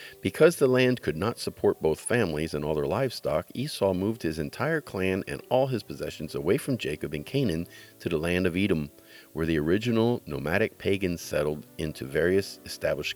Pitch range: 80-110 Hz